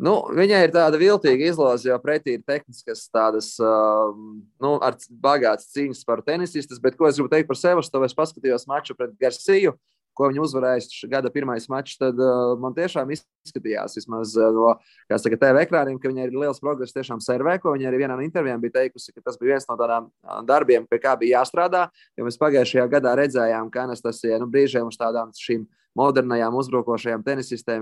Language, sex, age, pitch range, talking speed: English, male, 20-39, 120-145 Hz, 190 wpm